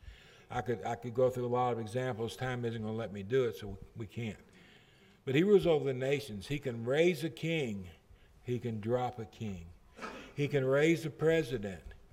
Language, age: English, 60-79